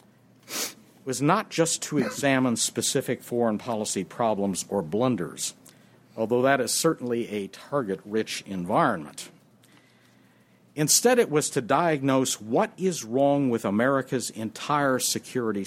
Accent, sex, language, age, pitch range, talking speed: American, male, English, 60-79, 105-145 Hz, 115 wpm